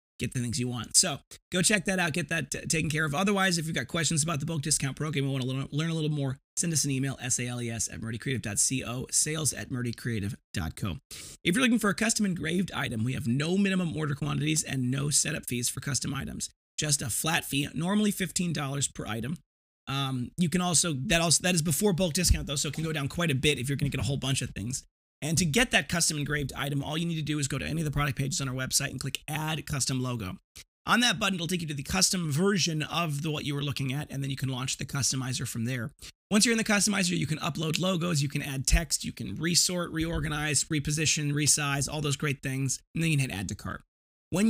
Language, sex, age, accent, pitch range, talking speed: English, male, 30-49, American, 135-165 Hz, 250 wpm